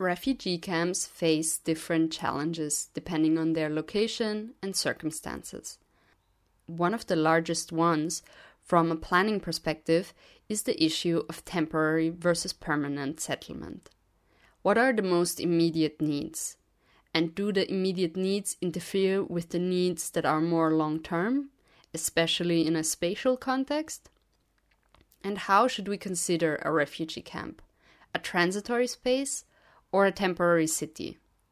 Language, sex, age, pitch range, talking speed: English, female, 20-39, 160-205 Hz, 130 wpm